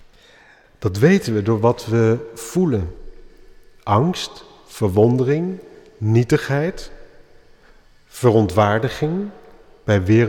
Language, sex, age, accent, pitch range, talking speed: Dutch, male, 50-69, Dutch, 105-135 Hz, 75 wpm